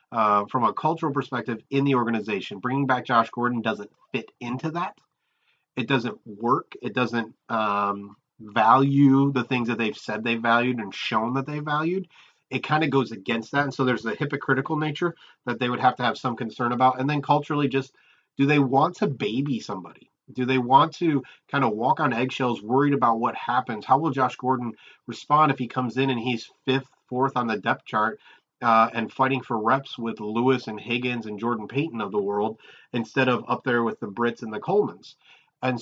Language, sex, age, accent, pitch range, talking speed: English, male, 30-49, American, 115-135 Hz, 205 wpm